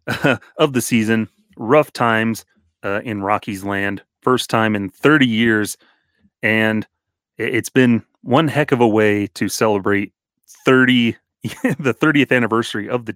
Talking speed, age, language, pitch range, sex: 140 wpm, 30-49, English, 100-135 Hz, male